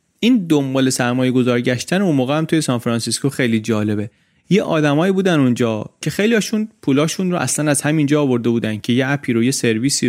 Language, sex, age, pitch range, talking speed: Persian, male, 30-49, 125-175 Hz, 180 wpm